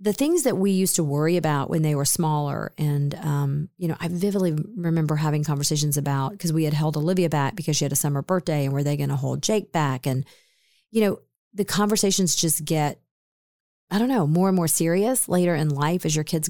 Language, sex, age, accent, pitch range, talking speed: English, female, 40-59, American, 155-185 Hz, 225 wpm